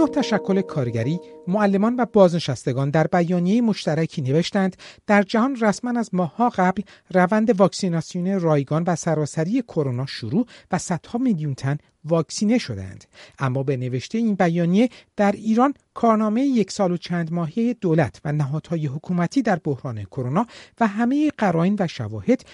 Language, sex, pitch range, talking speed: Persian, male, 150-205 Hz, 145 wpm